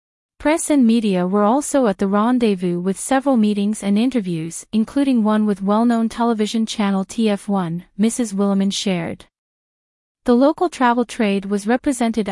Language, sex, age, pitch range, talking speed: English, female, 30-49, 200-240 Hz, 140 wpm